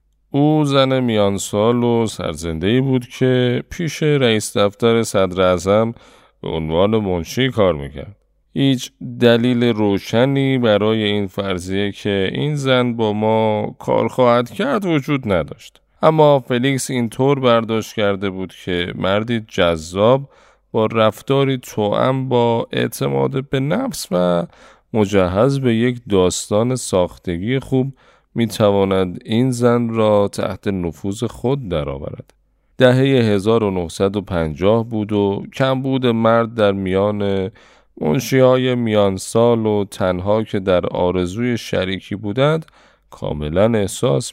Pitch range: 95-125 Hz